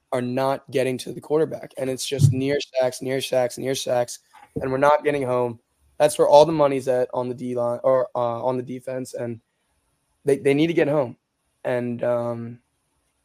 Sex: male